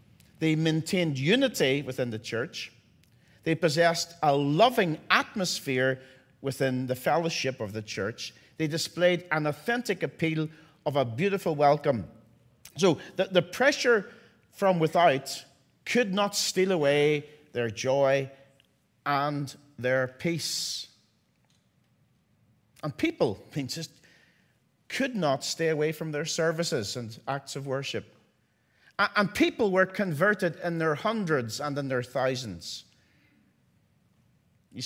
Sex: male